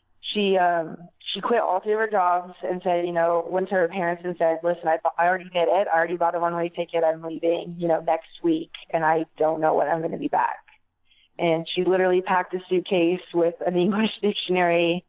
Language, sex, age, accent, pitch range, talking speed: English, female, 20-39, American, 165-185 Hz, 230 wpm